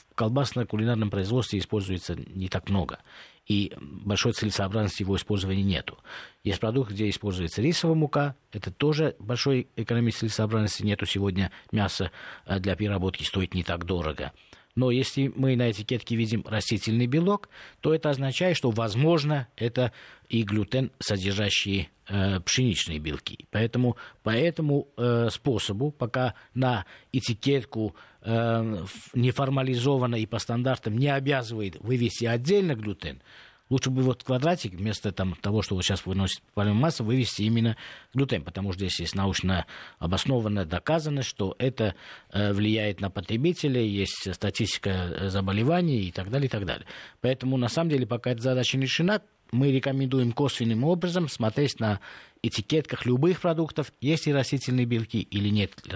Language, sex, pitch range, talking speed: Russian, male, 100-130 Hz, 145 wpm